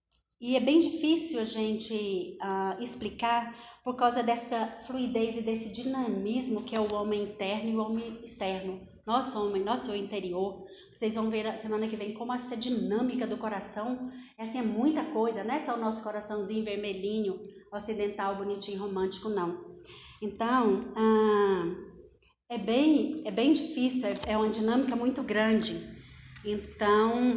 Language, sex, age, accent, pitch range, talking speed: Portuguese, female, 20-39, Brazilian, 210-265 Hz, 150 wpm